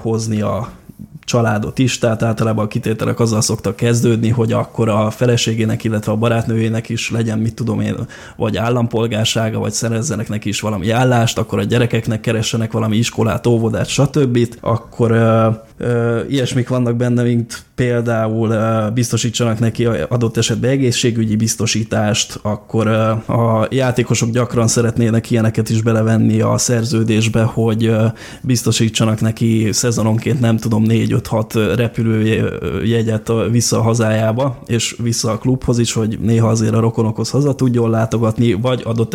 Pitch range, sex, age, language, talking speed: 110-120 Hz, male, 20-39, Hungarian, 145 wpm